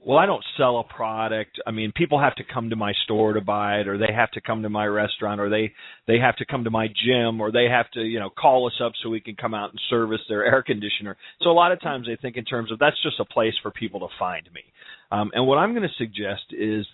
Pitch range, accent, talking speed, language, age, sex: 105-125 Hz, American, 285 wpm, English, 40-59, male